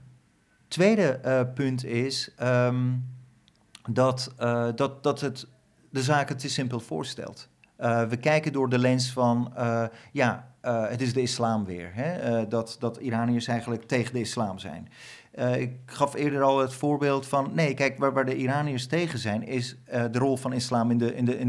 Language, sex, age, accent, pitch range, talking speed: Dutch, male, 40-59, Dutch, 120-145 Hz, 170 wpm